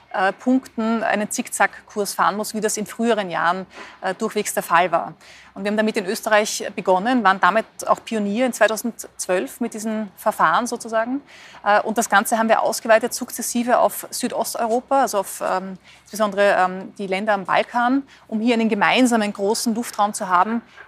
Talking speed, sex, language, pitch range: 160 wpm, female, German, 205-235 Hz